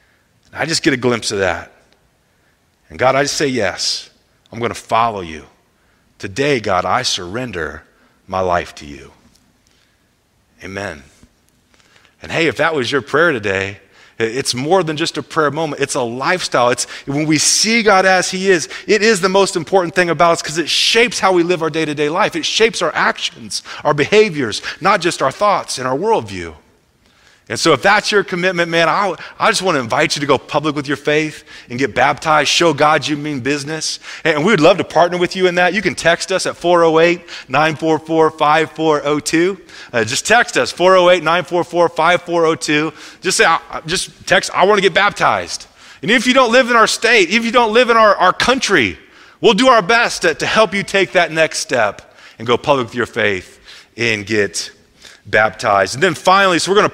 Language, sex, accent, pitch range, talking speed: English, male, American, 140-190 Hz, 195 wpm